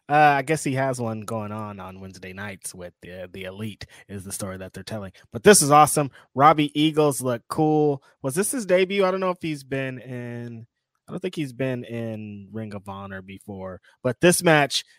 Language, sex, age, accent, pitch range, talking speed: English, male, 20-39, American, 110-145 Hz, 210 wpm